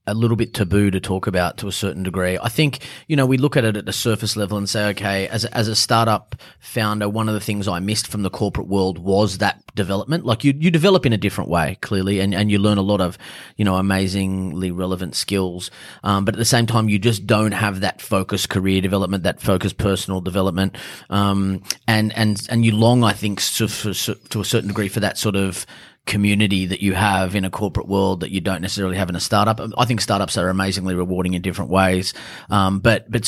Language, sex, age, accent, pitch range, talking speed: English, male, 30-49, Australian, 95-110 Hz, 235 wpm